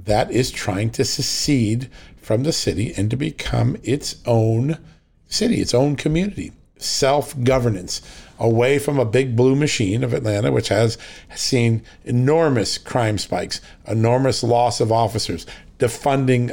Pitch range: 105-130 Hz